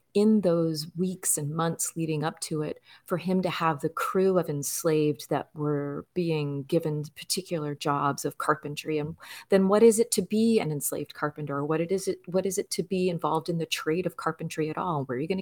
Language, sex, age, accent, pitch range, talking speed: English, female, 30-49, American, 150-185 Hz, 220 wpm